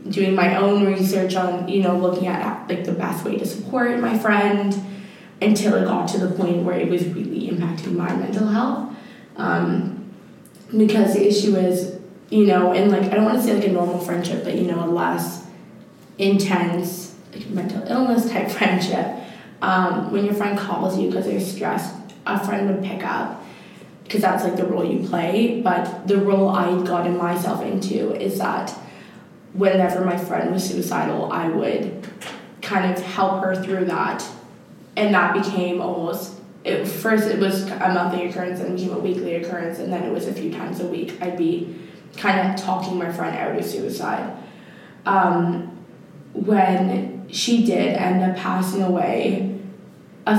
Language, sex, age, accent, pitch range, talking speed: English, female, 20-39, American, 180-200 Hz, 175 wpm